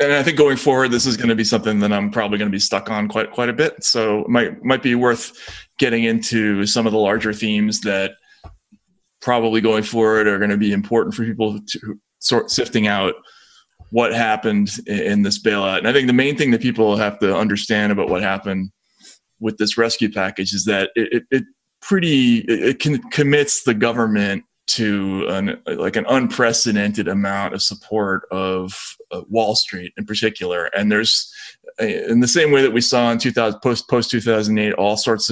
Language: English